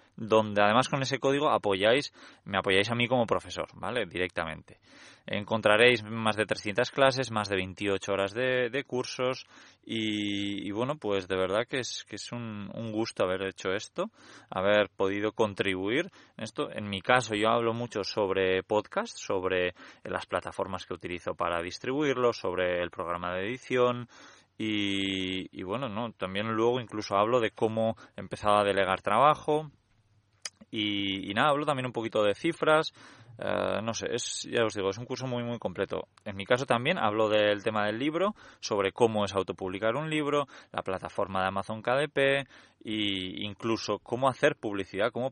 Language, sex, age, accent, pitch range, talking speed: Spanish, male, 20-39, Spanish, 95-125 Hz, 170 wpm